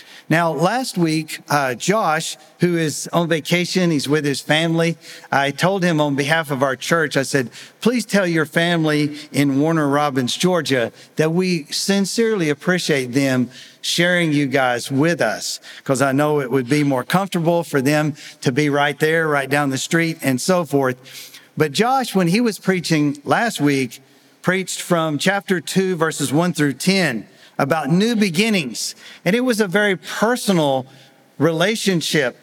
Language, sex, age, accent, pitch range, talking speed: English, male, 50-69, American, 145-190 Hz, 165 wpm